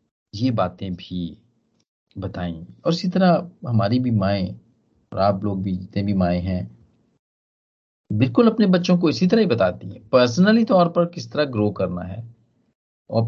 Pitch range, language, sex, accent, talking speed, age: 95-130 Hz, Hindi, male, native, 165 wpm, 40-59